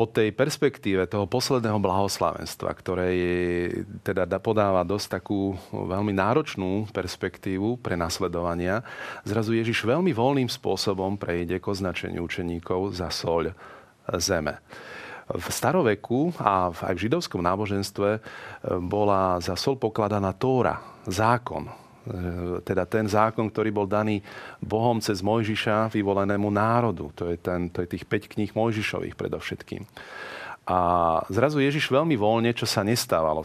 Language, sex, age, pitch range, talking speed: Slovak, male, 40-59, 90-115 Hz, 130 wpm